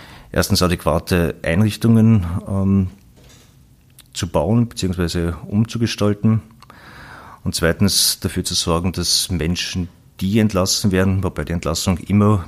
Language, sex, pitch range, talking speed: German, male, 90-105 Hz, 105 wpm